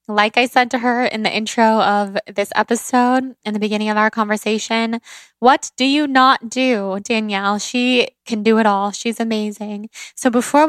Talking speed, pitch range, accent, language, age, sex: 180 wpm, 215-250 Hz, American, English, 10-29, female